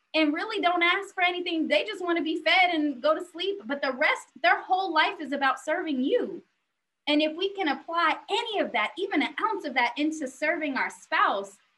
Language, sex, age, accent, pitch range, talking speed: English, female, 20-39, American, 235-315 Hz, 215 wpm